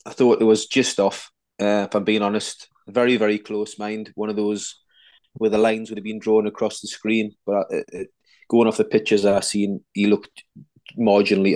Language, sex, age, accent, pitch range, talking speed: English, male, 20-39, British, 100-110 Hz, 210 wpm